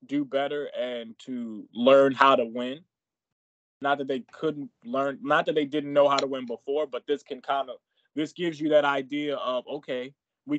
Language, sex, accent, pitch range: English, male, American, 125-155 Hz